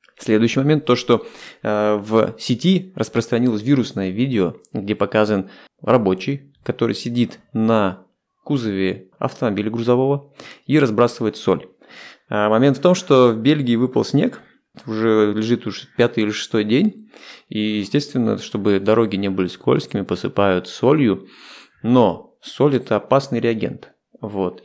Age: 20-39